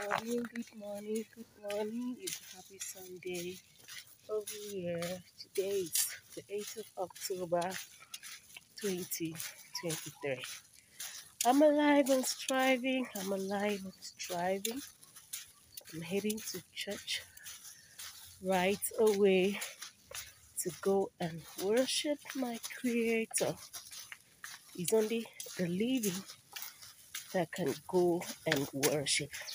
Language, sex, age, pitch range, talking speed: English, female, 30-49, 180-235 Hz, 95 wpm